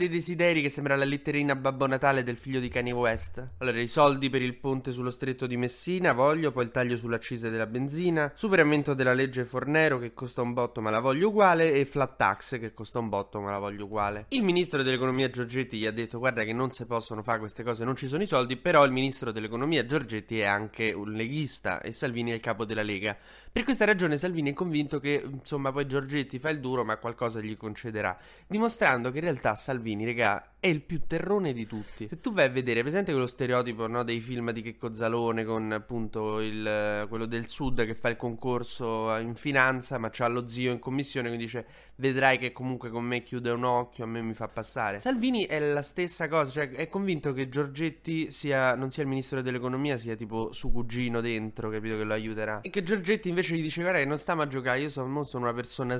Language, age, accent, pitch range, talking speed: Italian, 20-39, native, 115-145 Hz, 220 wpm